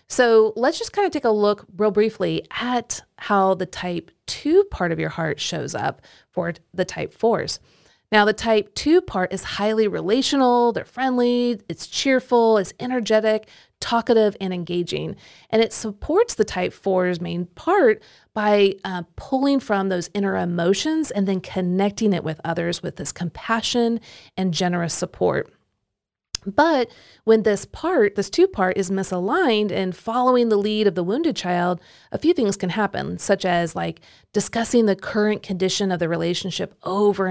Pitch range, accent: 185-230 Hz, American